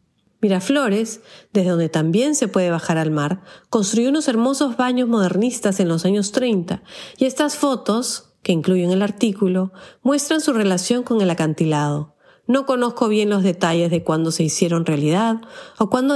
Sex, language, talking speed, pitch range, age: female, Spanish, 160 wpm, 175-225 Hz, 40-59